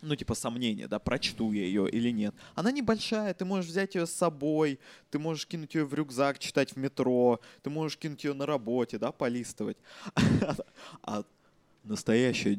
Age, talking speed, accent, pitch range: 20-39, 170 wpm, native, 115-150 Hz